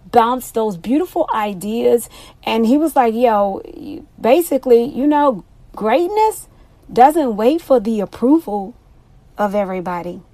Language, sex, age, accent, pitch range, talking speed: English, female, 40-59, American, 215-290 Hz, 115 wpm